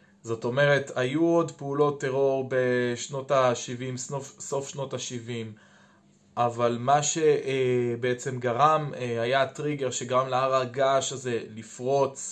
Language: Hebrew